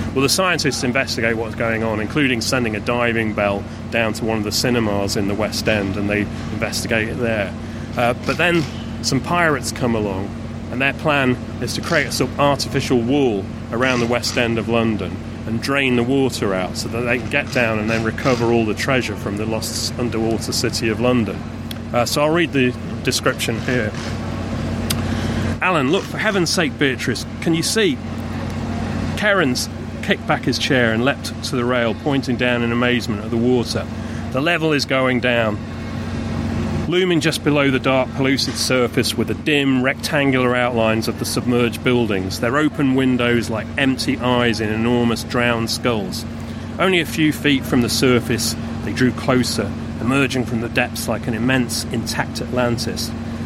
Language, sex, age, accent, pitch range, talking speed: English, male, 30-49, British, 110-130 Hz, 175 wpm